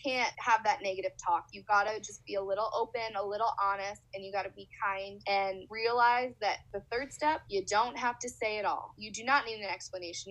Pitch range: 205-270 Hz